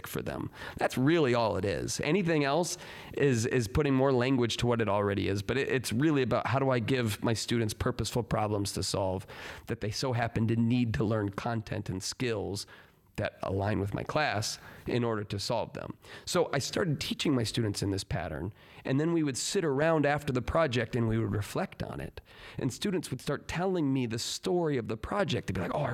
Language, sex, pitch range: English, male, 115-150 Hz